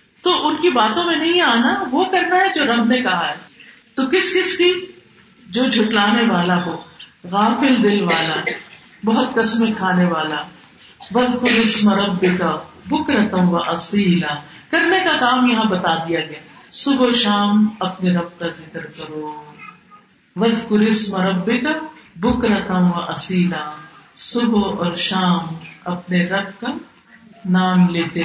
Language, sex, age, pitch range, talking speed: Urdu, female, 50-69, 180-240 Hz, 125 wpm